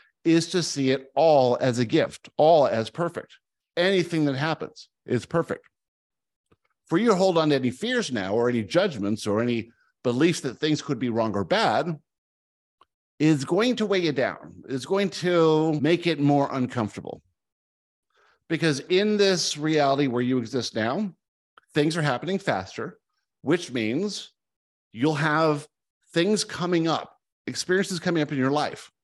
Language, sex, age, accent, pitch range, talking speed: English, male, 50-69, American, 120-165 Hz, 155 wpm